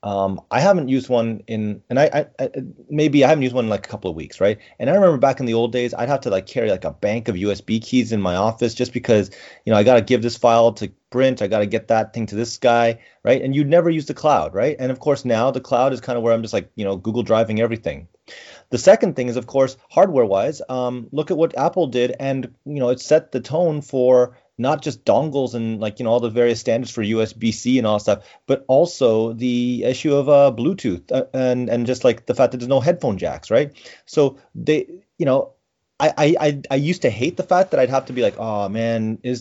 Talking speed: 260 wpm